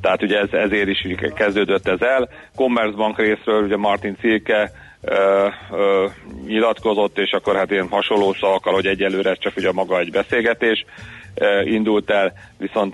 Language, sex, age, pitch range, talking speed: Hungarian, male, 40-59, 95-105 Hz, 155 wpm